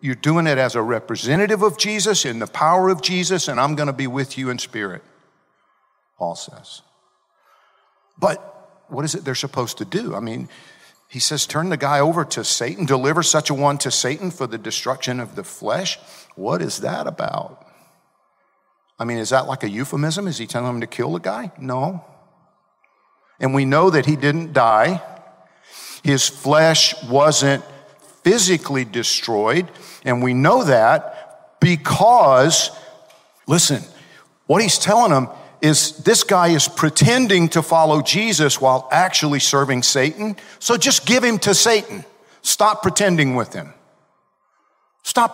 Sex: male